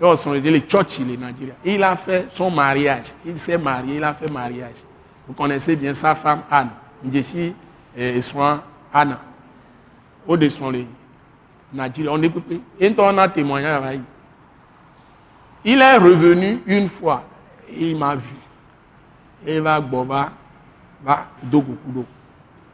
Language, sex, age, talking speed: French, male, 60-79, 115 wpm